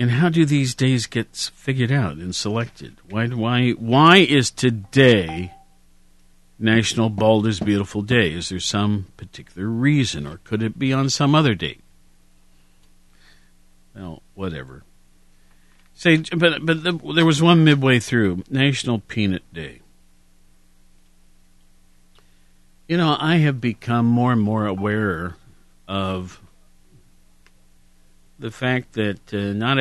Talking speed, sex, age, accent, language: 125 wpm, male, 50-69, American, English